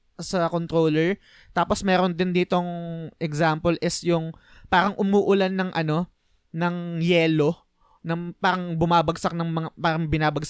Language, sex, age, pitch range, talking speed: Filipino, male, 20-39, 150-185 Hz, 120 wpm